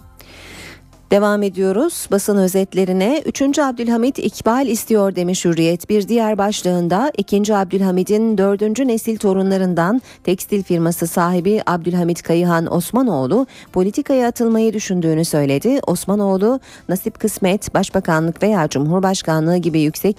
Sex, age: female, 40-59